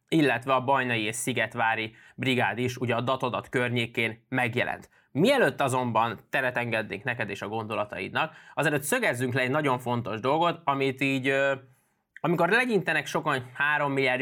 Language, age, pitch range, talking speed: Hungarian, 20-39, 120-140 Hz, 145 wpm